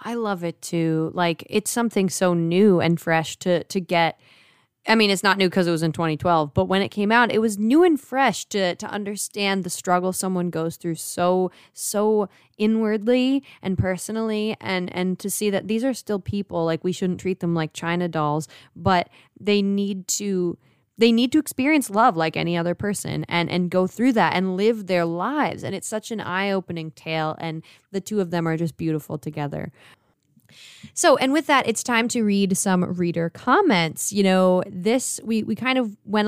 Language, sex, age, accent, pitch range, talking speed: English, female, 20-39, American, 175-220 Hz, 200 wpm